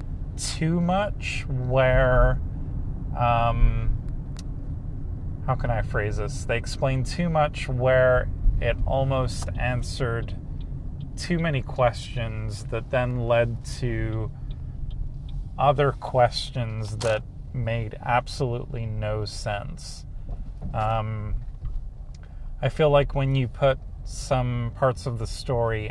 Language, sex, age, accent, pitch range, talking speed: English, male, 30-49, American, 100-125 Hz, 100 wpm